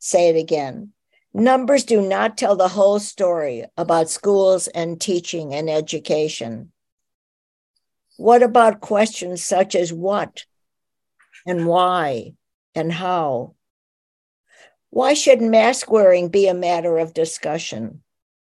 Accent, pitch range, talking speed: American, 160-210 Hz, 115 wpm